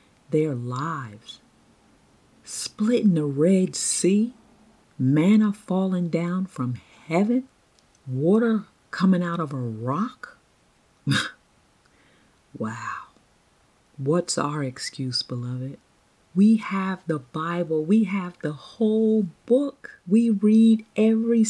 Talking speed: 100 wpm